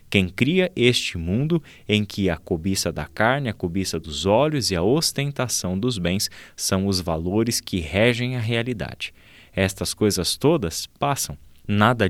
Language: Portuguese